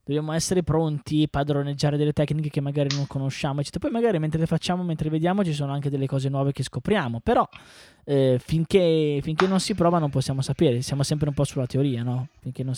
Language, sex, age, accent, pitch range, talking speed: Italian, male, 20-39, native, 120-145 Hz, 220 wpm